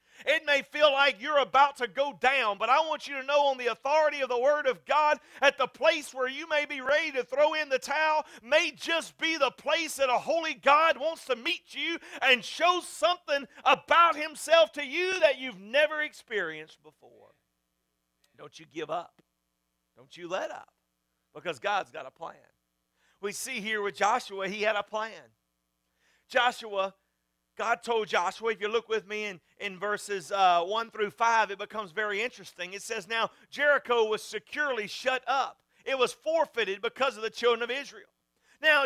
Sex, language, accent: male, English, American